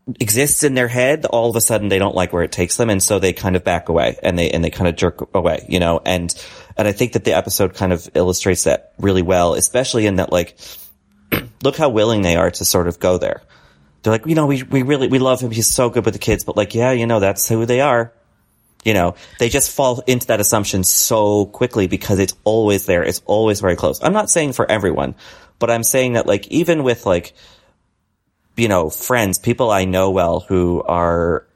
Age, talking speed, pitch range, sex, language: 30-49, 235 wpm, 90-115 Hz, male, English